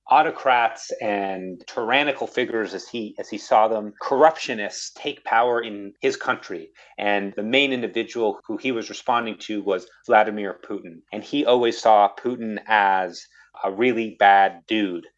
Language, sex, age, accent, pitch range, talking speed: English, male, 30-49, American, 100-130 Hz, 150 wpm